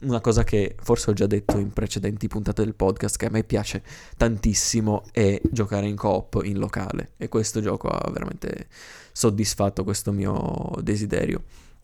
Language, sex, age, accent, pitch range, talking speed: Italian, male, 20-39, native, 100-115 Hz, 160 wpm